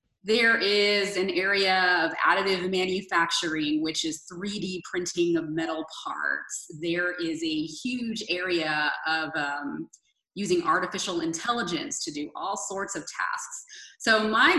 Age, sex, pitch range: 20-39, female, 160-210 Hz